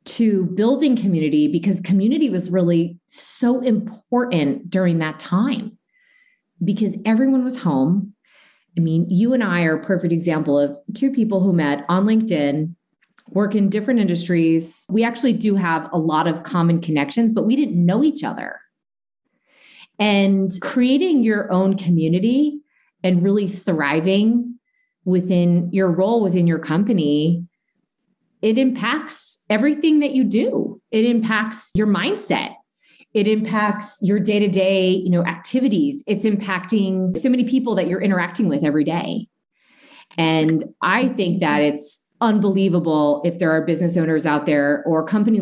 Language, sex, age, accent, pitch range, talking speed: English, female, 30-49, American, 165-220 Hz, 140 wpm